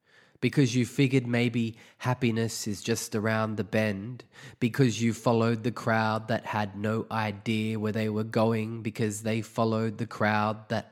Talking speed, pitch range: 160 wpm, 110-125 Hz